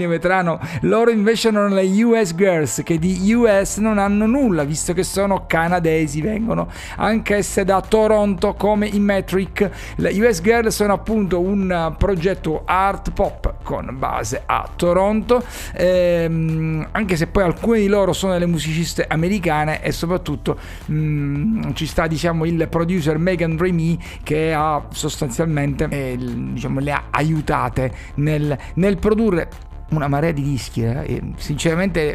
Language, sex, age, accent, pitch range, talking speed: Italian, male, 50-69, native, 150-195 Hz, 145 wpm